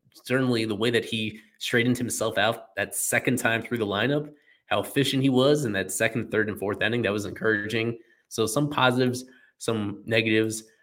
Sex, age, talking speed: male, 20-39, 185 wpm